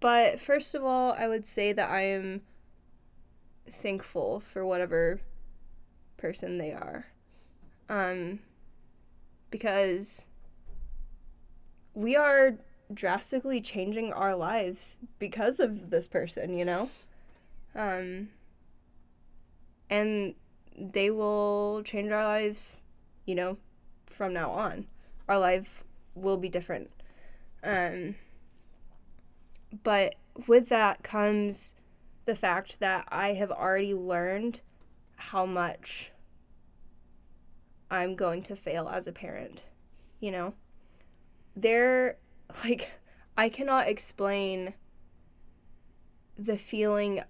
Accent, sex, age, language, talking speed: American, female, 10-29, English, 95 wpm